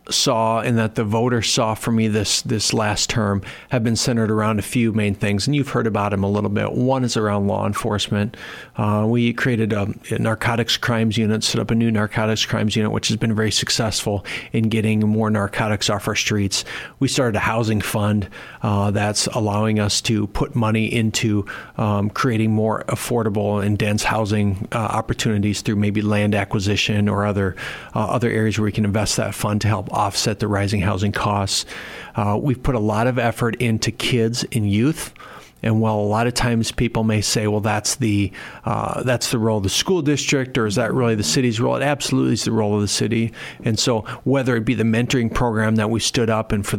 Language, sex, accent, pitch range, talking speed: English, male, American, 105-115 Hz, 210 wpm